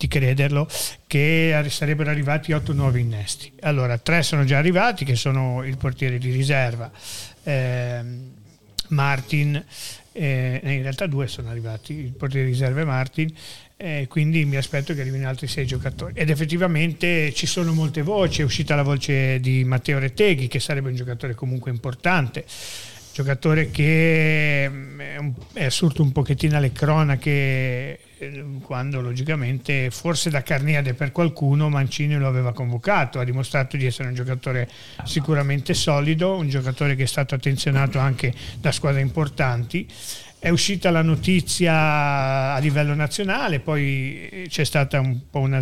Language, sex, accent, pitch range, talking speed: Italian, male, native, 130-155 Hz, 150 wpm